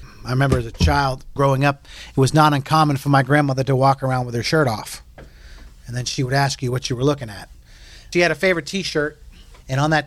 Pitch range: 105-135 Hz